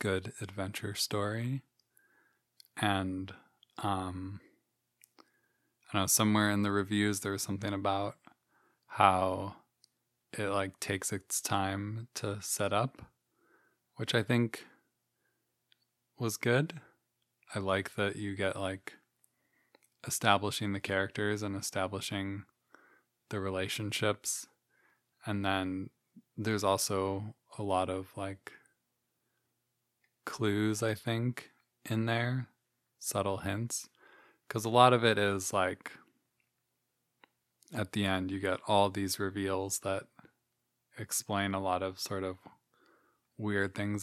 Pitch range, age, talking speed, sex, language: 95-110 Hz, 20-39, 110 wpm, male, English